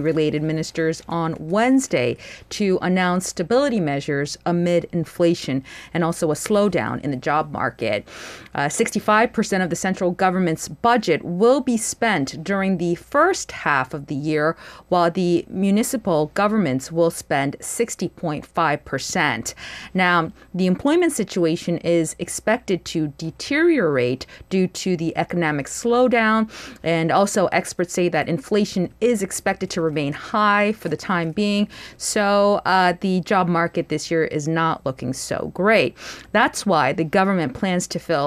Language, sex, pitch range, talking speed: English, female, 160-210 Hz, 140 wpm